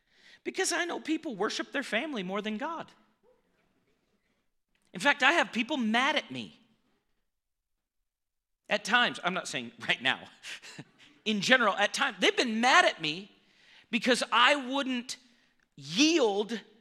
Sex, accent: male, American